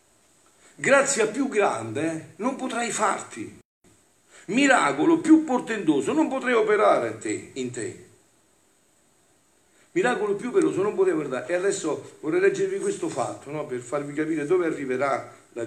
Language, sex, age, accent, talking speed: Italian, male, 50-69, native, 130 wpm